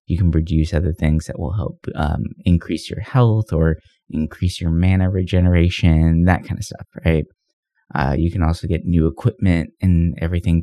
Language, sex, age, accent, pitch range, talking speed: English, male, 20-39, American, 80-105 Hz, 175 wpm